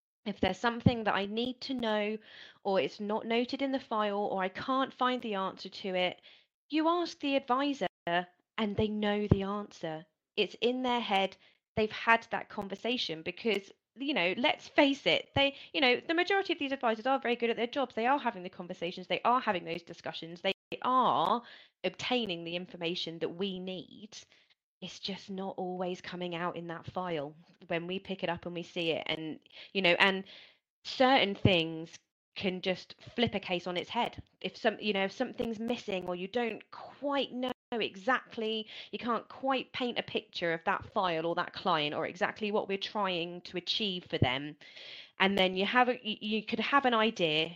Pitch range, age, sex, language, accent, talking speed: 180-235 Hz, 20-39, female, English, British, 195 wpm